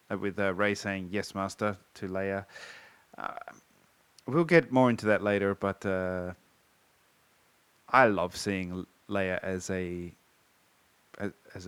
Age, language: 30-49, English